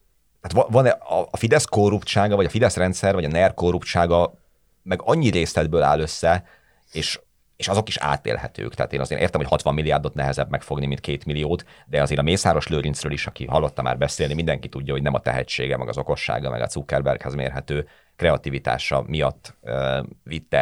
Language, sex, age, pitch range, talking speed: Hungarian, male, 30-49, 70-95 Hz, 180 wpm